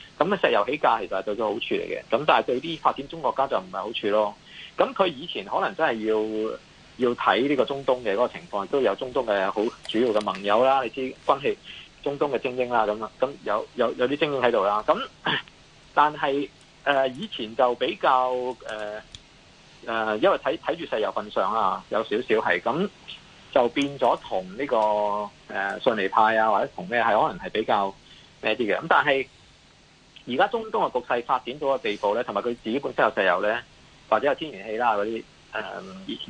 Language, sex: Chinese, male